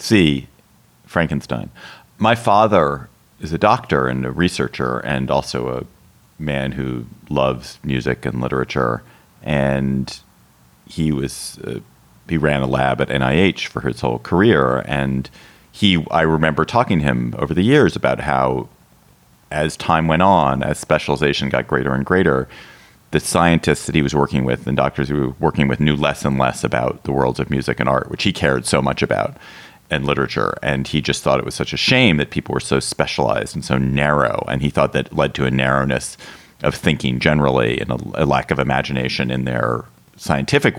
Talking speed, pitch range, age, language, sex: 180 wpm, 65-75 Hz, 40-59, English, male